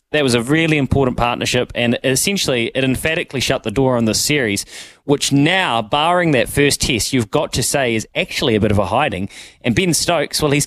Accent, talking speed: Australian, 215 wpm